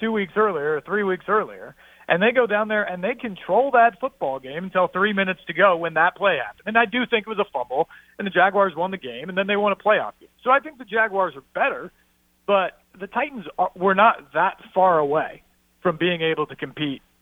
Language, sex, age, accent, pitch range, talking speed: English, male, 40-59, American, 155-210 Hz, 235 wpm